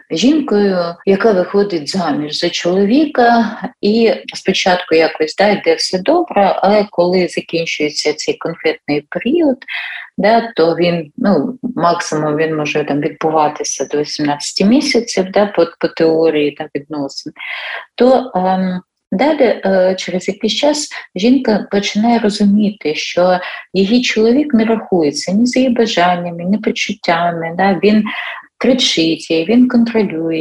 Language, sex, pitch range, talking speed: Ukrainian, female, 170-220 Hz, 125 wpm